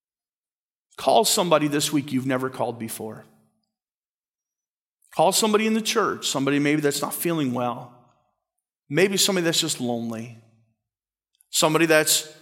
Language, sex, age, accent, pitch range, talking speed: English, male, 40-59, American, 130-190 Hz, 125 wpm